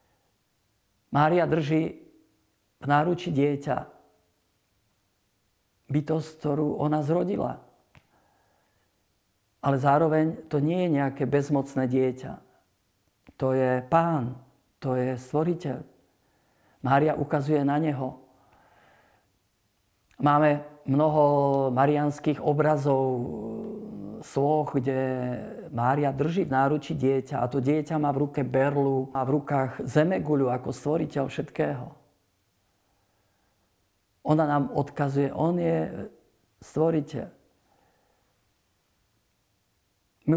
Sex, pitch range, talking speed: male, 125-150 Hz, 90 wpm